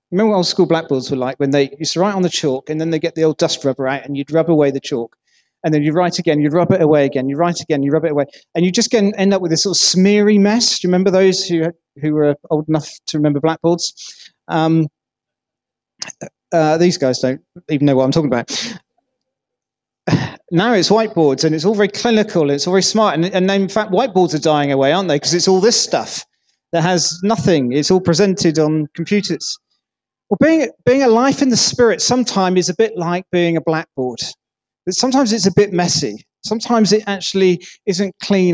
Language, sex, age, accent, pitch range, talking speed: English, male, 40-59, British, 155-200 Hz, 225 wpm